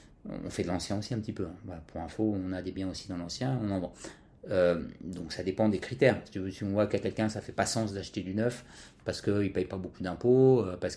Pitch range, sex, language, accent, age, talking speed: 95-125 Hz, male, French, French, 30-49, 270 wpm